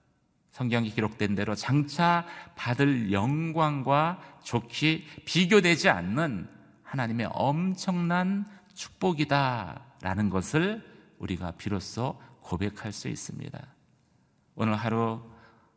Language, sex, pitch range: Korean, male, 110-165 Hz